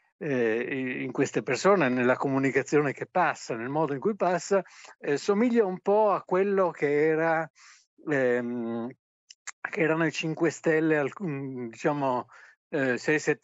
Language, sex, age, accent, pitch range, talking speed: Italian, male, 60-79, native, 130-165 Hz, 125 wpm